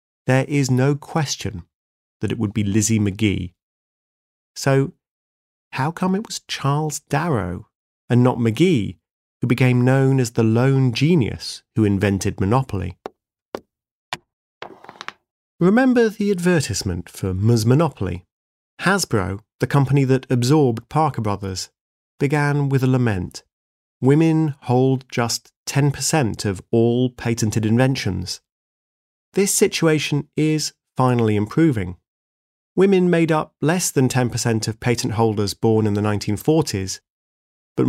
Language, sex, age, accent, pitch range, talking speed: English, male, 30-49, British, 105-150 Hz, 115 wpm